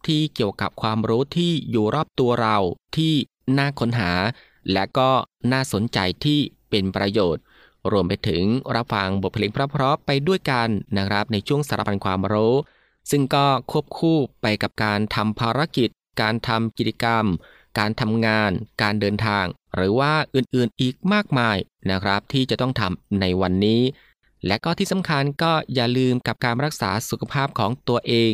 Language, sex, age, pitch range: Thai, male, 20-39, 100-135 Hz